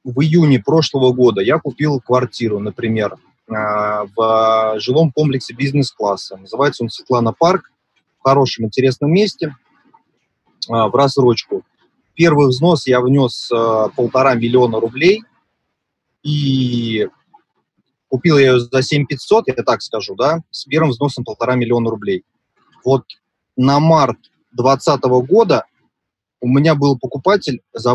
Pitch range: 115-145 Hz